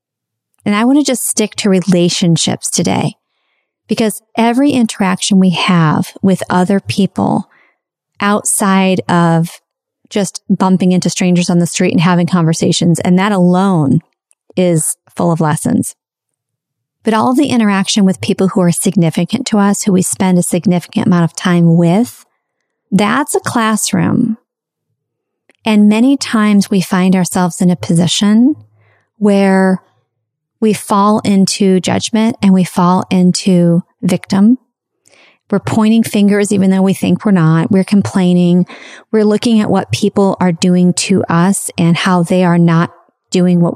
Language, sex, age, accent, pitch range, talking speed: English, female, 40-59, American, 175-210 Hz, 145 wpm